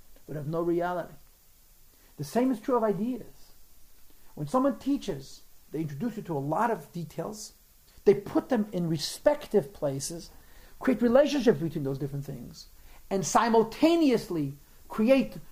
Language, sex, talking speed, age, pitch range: English, male, 140 wpm, 50-69, 170-250 Hz